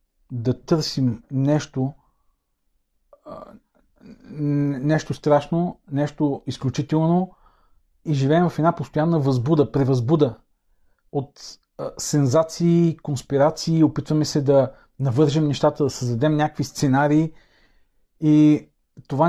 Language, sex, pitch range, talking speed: Bulgarian, male, 130-155 Hz, 85 wpm